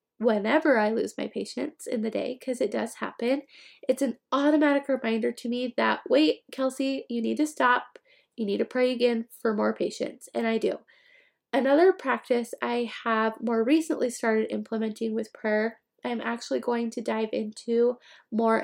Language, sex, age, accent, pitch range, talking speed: English, female, 20-39, American, 230-285 Hz, 170 wpm